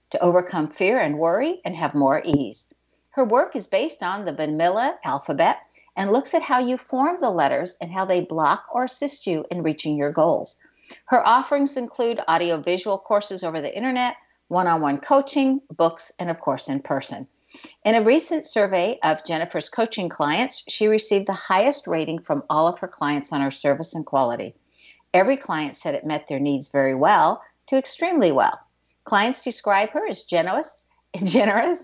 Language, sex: English, female